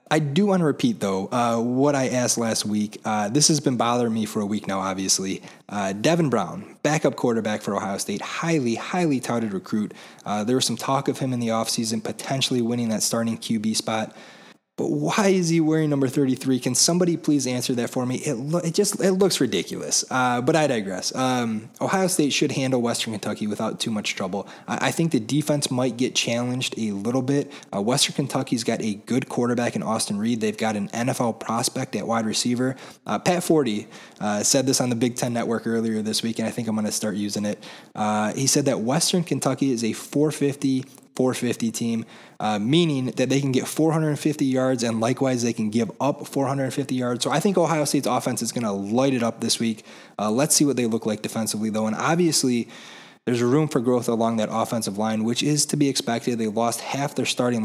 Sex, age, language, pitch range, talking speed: male, 20-39, English, 115-140 Hz, 215 wpm